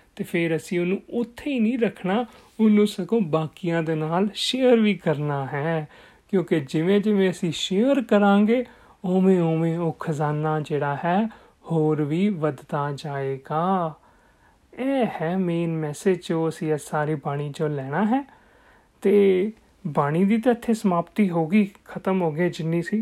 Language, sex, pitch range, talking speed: Punjabi, male, 160-205 Hz, 130 wpm